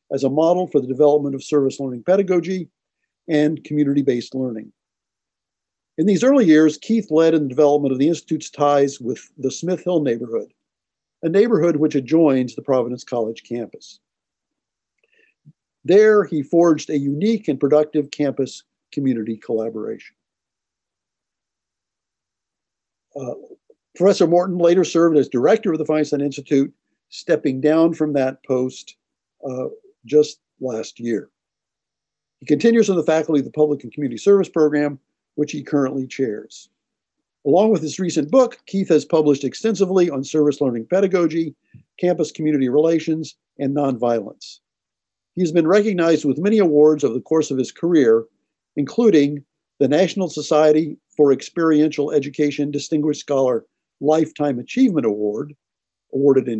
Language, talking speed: English, 135 wpm